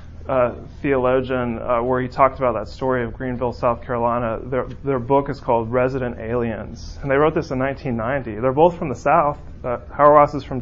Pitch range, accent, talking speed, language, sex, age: 115-140 Hz, American, 200 wpm, English, male, 30-49